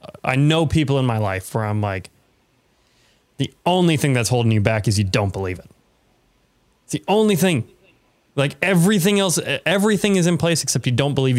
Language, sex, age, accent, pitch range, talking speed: English, male, 20-39, American, 115-160 Hz, 190 wpm